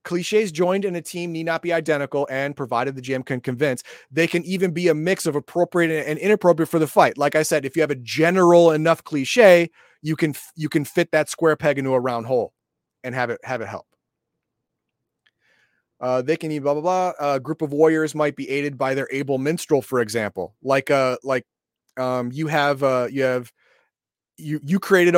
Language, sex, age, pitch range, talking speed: English, male, 30-49, 140-175 Hz, 210 wpm